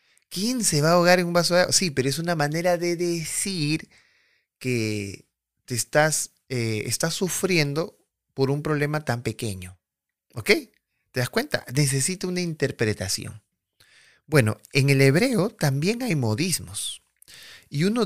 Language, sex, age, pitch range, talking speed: Spanish, male, 30-49, 110-165 Hz, 145 wpm